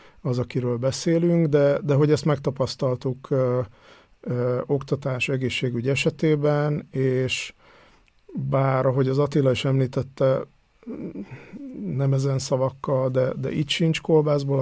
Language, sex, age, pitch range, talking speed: Hungarian, male, 50-69, 125-145 Hz, 105 wpm